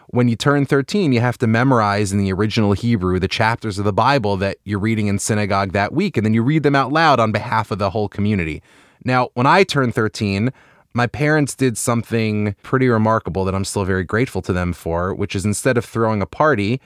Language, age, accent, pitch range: English, 20-39, American, 100-125 Hz